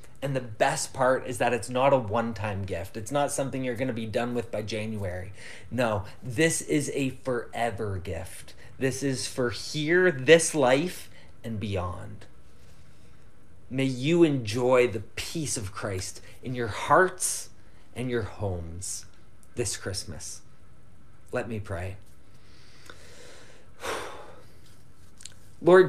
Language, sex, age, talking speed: English, male, 30-49, 125 wpm